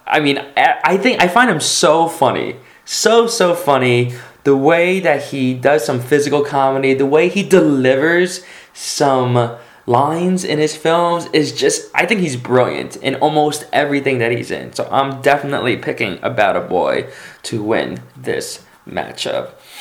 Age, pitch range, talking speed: 20-39, 120-155 Hz, 160 wpm